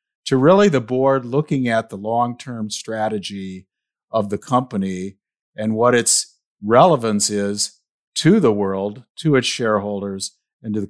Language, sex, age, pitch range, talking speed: English, male, 50-69, 110-130 Hz, 145 wpm